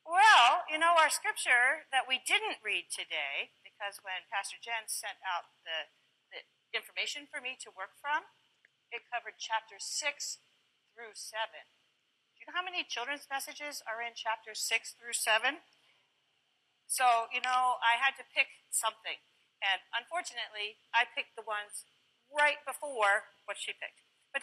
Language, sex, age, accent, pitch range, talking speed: English, female, 40-59, American, 225-300 Hz, 155 wpm